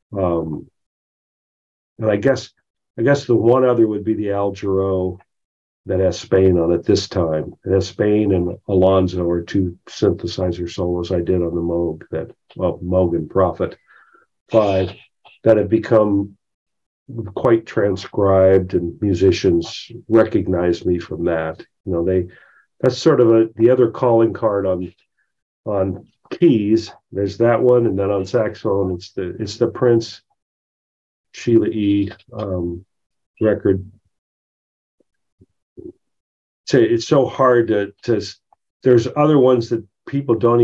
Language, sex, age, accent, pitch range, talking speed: English, male, 50-69, American, 90-115 Hz, 135 wpm